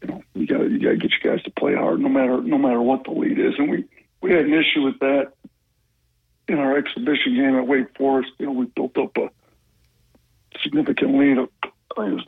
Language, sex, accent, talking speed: English, male, American, 235 wpm